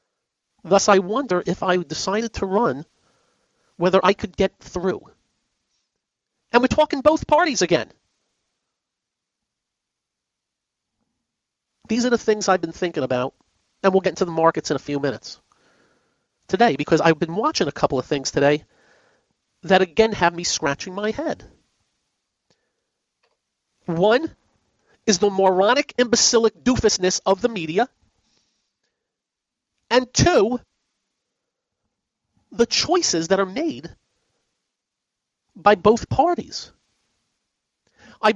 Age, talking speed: 40-59, 115 wpm